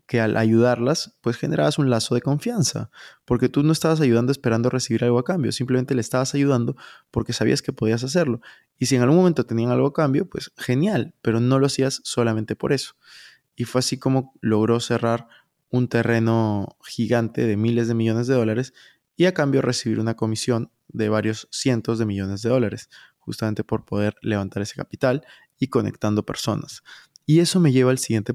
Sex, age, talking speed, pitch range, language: male, 20-39, 190 wpm, 115-135 Hz, Spanish